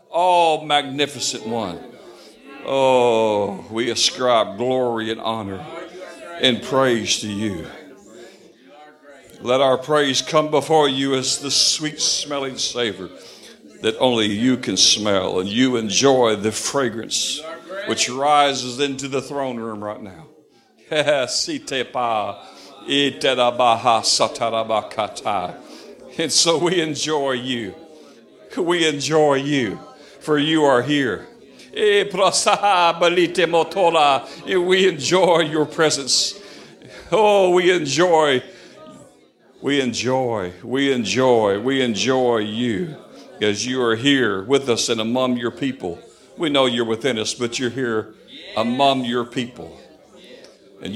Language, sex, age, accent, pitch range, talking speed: English, male, 60-79, American, 120-150 Hz, 105 wpm